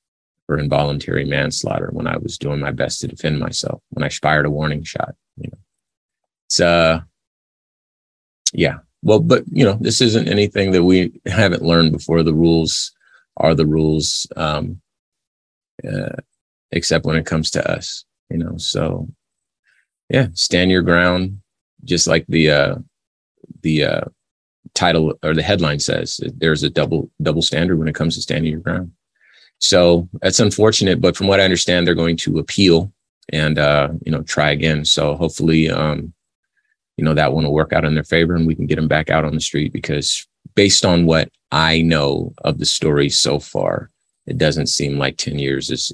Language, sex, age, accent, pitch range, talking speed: English, male, 30-49, American, 80-90 Hz, 180 wpm